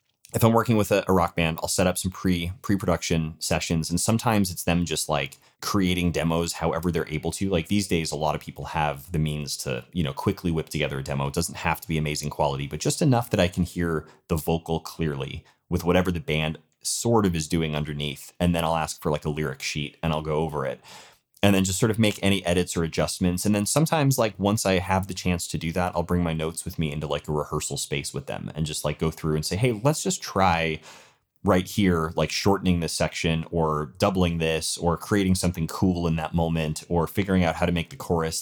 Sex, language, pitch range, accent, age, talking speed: male, English, 80-95 Hz, American, 30-49, 240 wpm